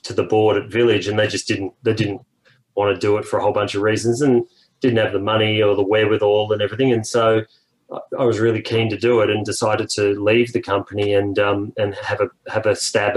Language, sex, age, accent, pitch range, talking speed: English, male, 30-49, Australian, 105-120 Hz, 240 wpm